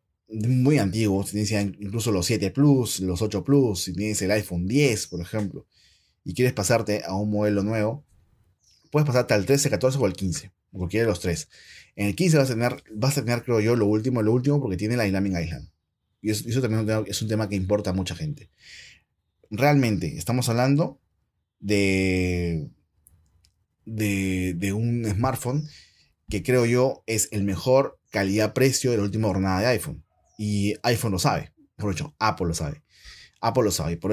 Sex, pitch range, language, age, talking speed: male, 90-115 Hz, Spanish, 30-49, 180 wpm